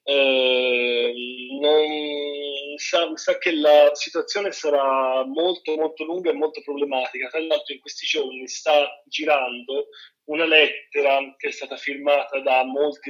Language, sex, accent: Italian, male, native